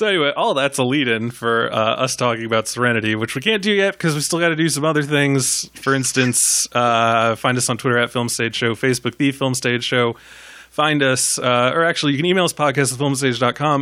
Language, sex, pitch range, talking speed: English, male, 125-175 Hz, 225 wpm